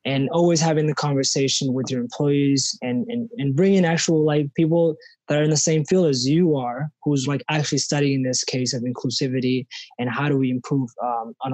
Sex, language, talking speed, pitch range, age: male, English, 205 wpm, 130-155 Hz, 20-39